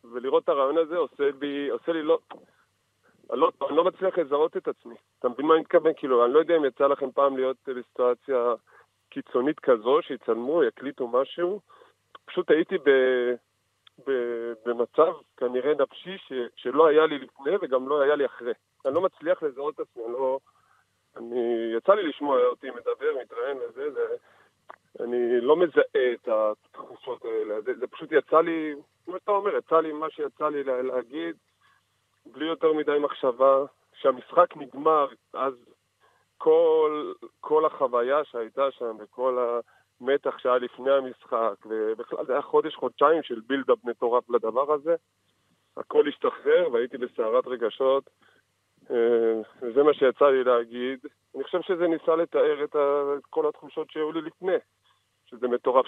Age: 30-49